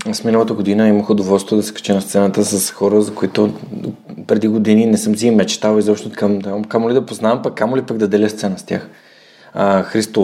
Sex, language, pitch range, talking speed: male, Bulgarian, 100-120 Hz, 210 wpm